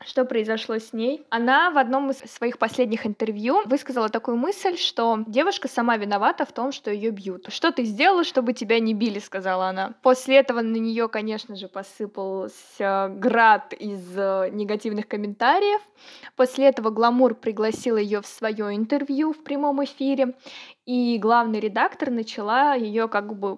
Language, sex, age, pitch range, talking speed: Russian, female, 20-39, 215-265 Hz, 155 wpm